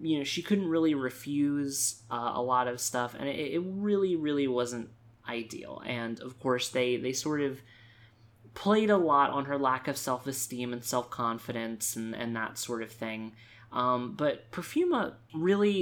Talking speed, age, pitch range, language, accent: 180 wpm, 20-39, 115-145 Hz, English, American